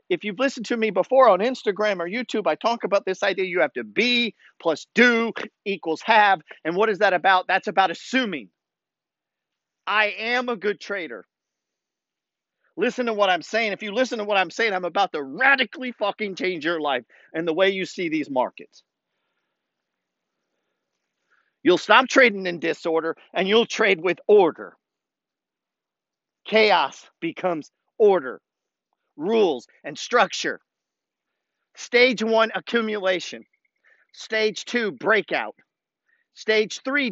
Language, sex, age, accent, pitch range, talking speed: English, male, 50-69, American, 190-235 Hz, 140 wpm